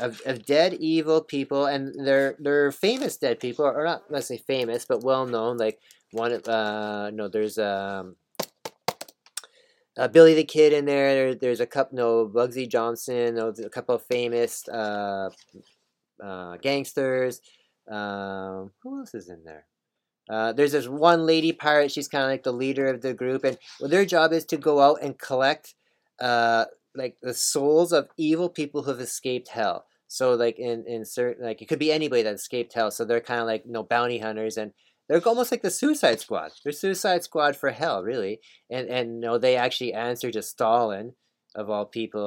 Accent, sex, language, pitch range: American, male, English, 115-145 Hz